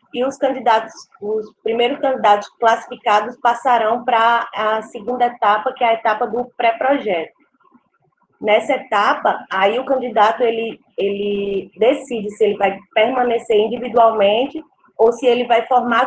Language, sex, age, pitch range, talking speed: Portuguese, female, 20-39, 215-255 Hz, 135 wpm